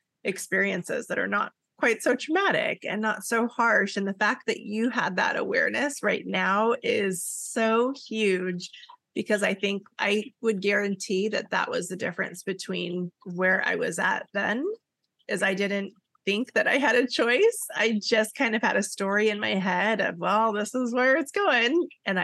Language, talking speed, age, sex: English, 185 wpm, 20-39, female